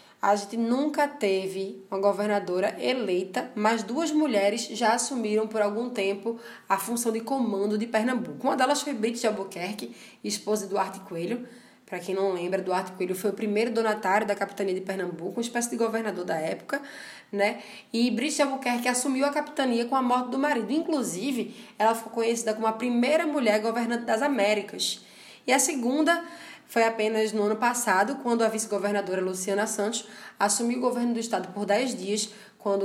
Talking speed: 175 wpm